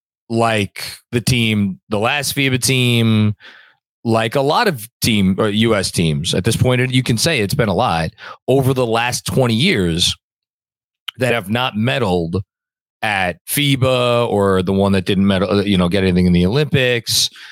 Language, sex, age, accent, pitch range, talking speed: English, male, 30-49, American, 105-135 Hz, 170 wpm